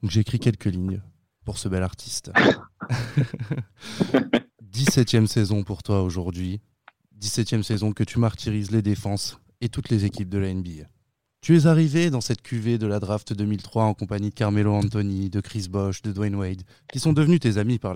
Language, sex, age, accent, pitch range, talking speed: French, male, 20-39, French, 100-120 Hz, 185 wpm